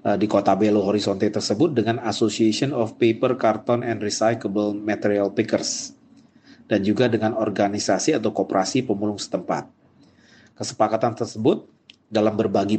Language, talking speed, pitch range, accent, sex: Indonesian, 120 wpm, 105-125 Hz, native, male